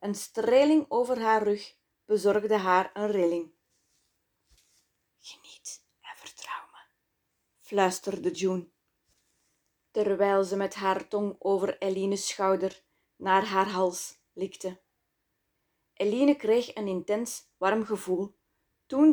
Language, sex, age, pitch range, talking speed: Dutch, female, 20-39, 185-230 Hz, 105 wpm